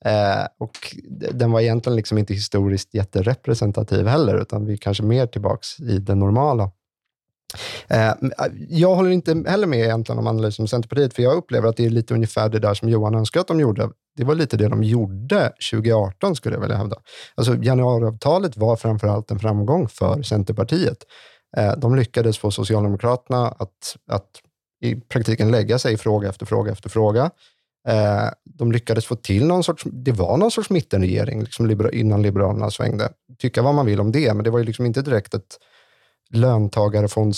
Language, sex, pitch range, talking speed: Swedish, male, 105-125 Hz, 180 wpm